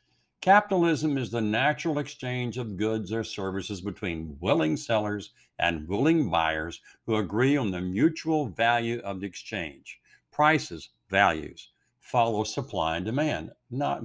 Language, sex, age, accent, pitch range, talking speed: English, male, 60-79, American, 95-140 Hz, 130 wpm